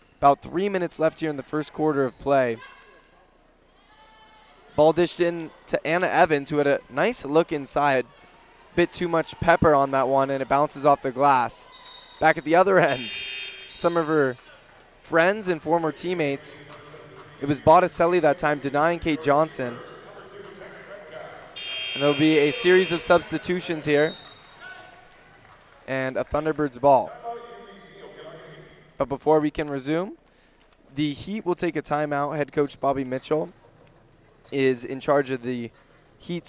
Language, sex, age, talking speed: English, male, 20-39, 145 wpm